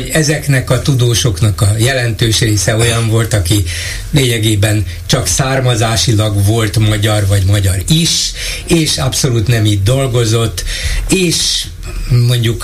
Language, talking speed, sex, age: Hungarian, 120 wpm, male, 60-79